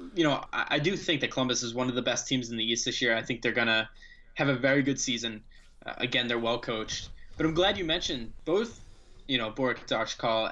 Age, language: 10-29, English